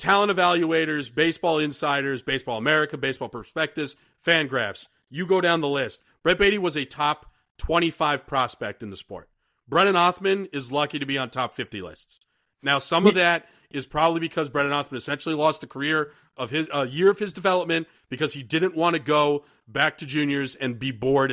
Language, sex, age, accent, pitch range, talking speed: English, male, 40-59, American, 140-175 Hz, 190 wpm